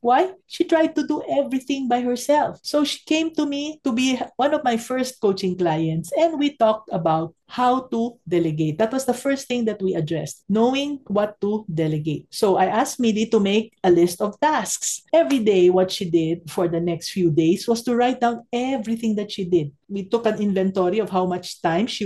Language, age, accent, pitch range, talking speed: English, 50-69, Filipino, 180-270 Hz, 210 wpm